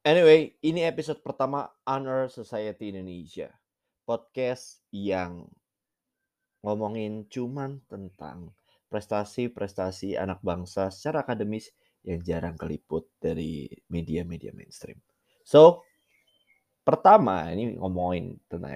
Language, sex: Indonesian, male